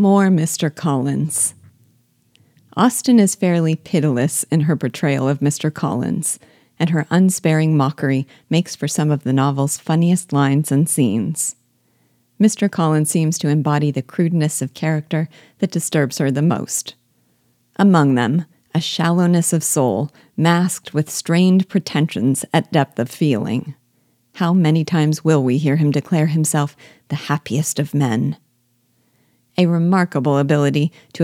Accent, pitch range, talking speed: American, 140-175 Hz, 140 wpm